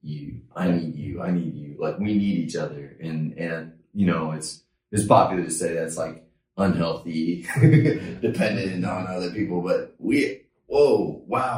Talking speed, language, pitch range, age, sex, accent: 160 wpm, English, 80-95 Hz, 30-49, male, American